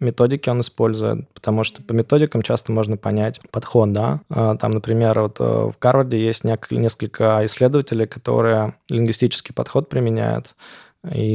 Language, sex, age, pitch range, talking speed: Russian, male, 20-39, 110-125 Hz, 130 wpm